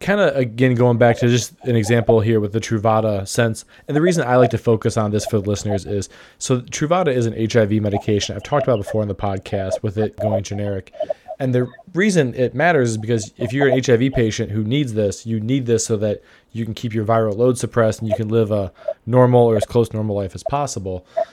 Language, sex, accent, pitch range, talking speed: English, male, American, 110-130 Hz, 240 wpm